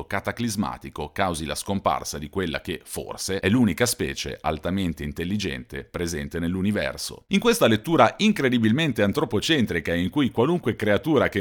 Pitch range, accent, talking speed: 85-120 Hz, native, 130 wpm